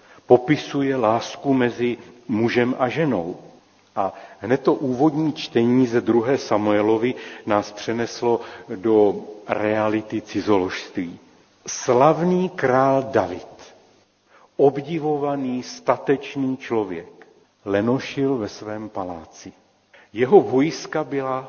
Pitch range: 105-140 Hz